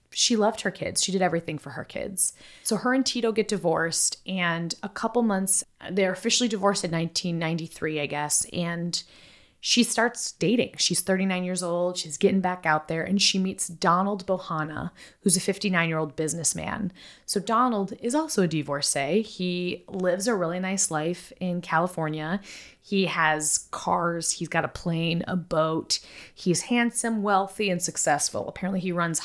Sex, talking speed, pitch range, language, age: female, 170 wpm, 165-205 Hz, English, 20-39